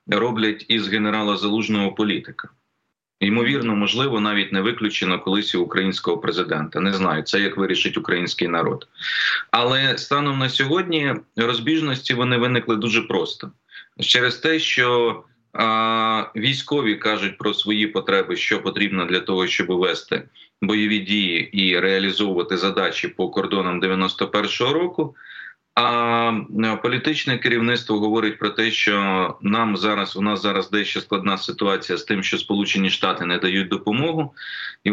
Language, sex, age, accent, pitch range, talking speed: Ukrainian, male, 30-49, native, 100-120 Hz, 130 wpm